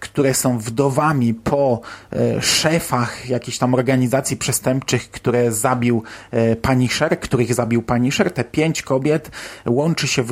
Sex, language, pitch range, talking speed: male, Polish, 120-140 Hz, 120 wpm